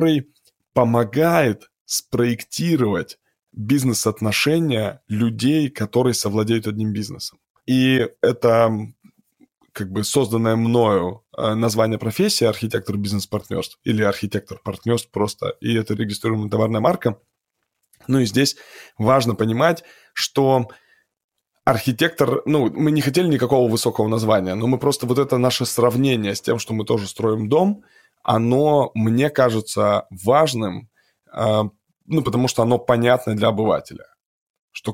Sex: male